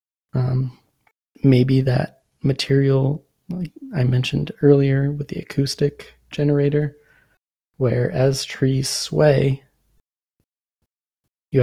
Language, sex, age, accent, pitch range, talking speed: English, male, 20-39, American, 130-155 Hz, 90 wpm